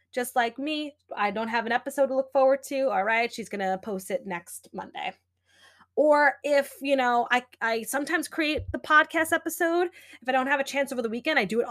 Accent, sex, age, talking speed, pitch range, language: American, female, 20-39, 225 wpm, 200-270 Hz, English